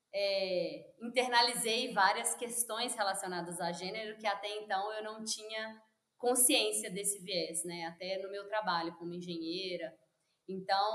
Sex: female